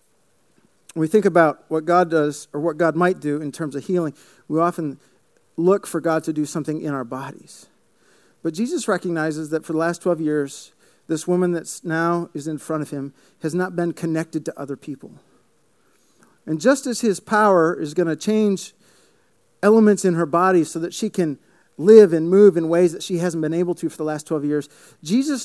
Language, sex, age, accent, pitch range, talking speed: English, male, 50-69, American, 160-215 Hz, 200 wpm